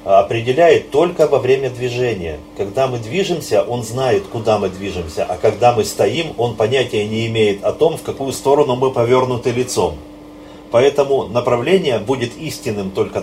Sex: male